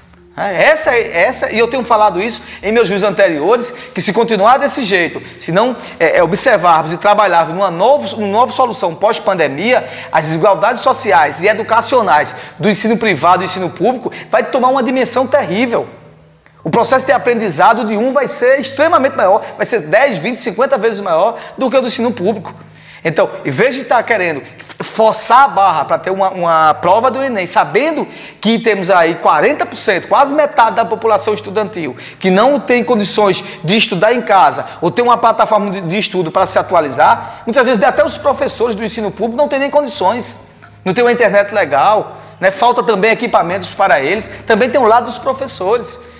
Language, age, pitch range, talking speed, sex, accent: Portuguese, 20-39, 200-255 Hz, 185 wpm, male, Brazilian